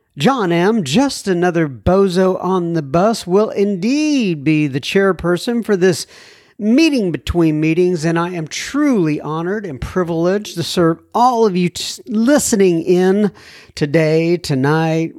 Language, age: English, 50-69